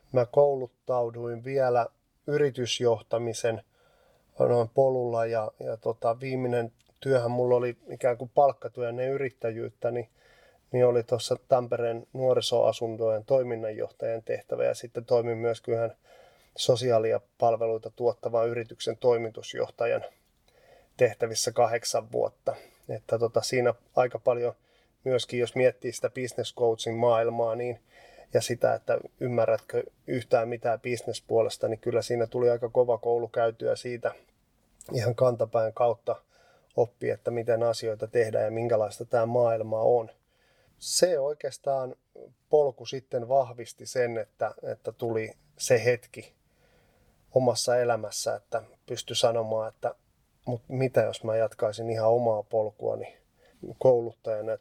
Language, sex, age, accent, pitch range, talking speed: Finnish, male, 30-49, native, 115-130 Hz, 115 wpm